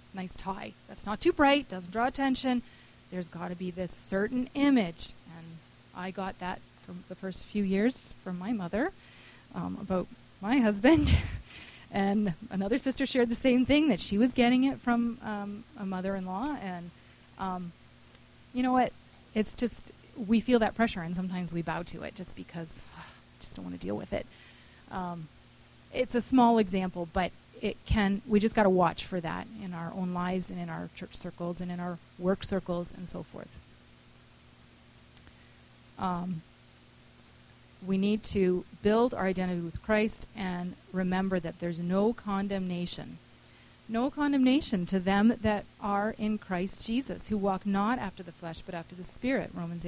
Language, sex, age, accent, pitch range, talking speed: English, female, 30-49, American, 170-225 Hz, 170 wpm